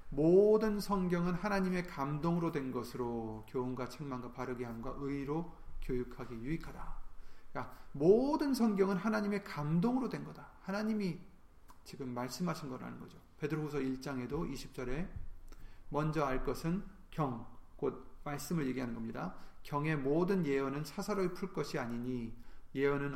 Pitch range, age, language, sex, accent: 125-175 Hz, 30-49, Korean, male, native